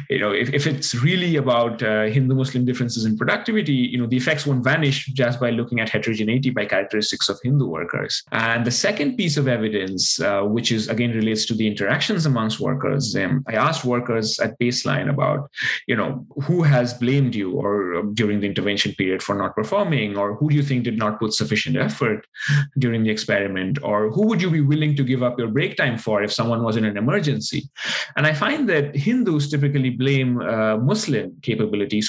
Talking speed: 205 wpm